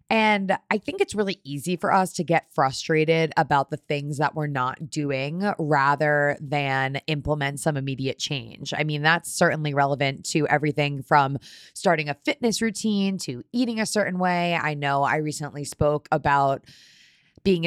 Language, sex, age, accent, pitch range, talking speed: English, female, 20-39, American, 140-180 Hz, 165 wpm